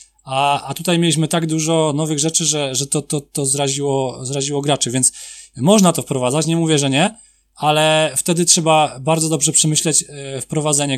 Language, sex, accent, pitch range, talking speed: Polish, male, native, 135-160 Hz, 175 wpm